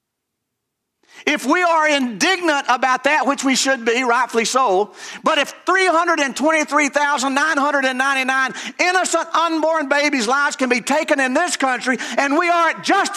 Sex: male